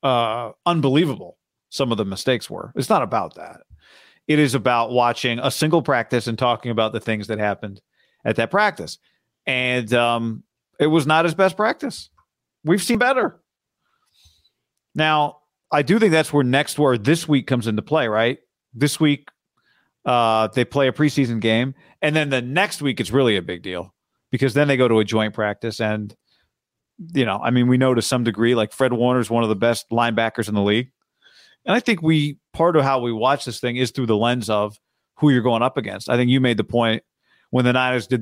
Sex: male